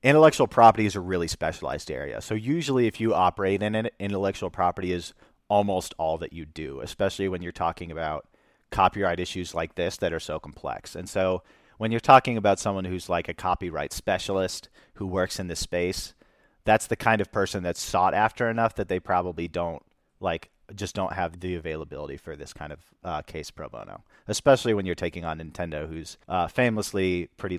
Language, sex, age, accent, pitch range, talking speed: English, male, 40-59, American, 90-115 Hz, 195 wpm